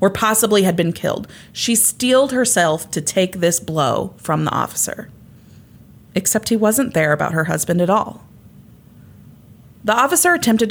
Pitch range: 175-230 Hz